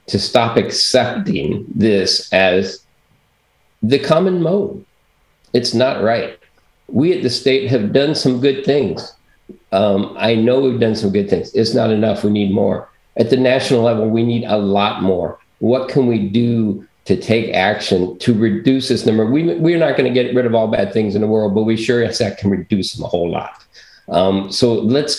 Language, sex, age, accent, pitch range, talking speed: English, male, 50-69, American, 100-125 Hz, 190 wpm